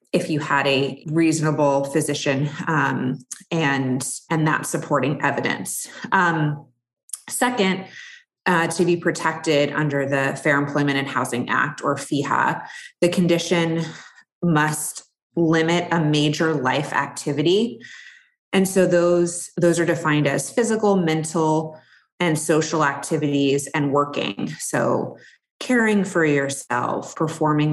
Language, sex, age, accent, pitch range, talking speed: English, female, 20-39, American, 145-180 Hz, 115 wpm